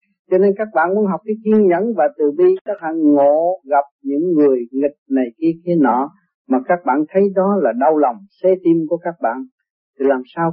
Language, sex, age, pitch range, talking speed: Vietnamese, male, 40-59, 140-195 Hz, 220 wpm